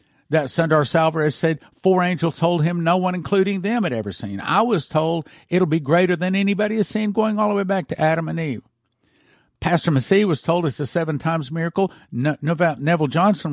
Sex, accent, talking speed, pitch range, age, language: male, American, 205 wpm, 125-165 Hz, 50-69, English